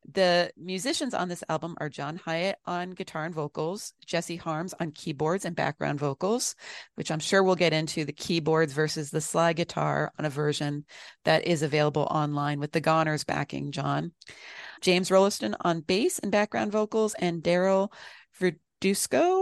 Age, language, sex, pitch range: 40-59, English, female, 155-195 Hz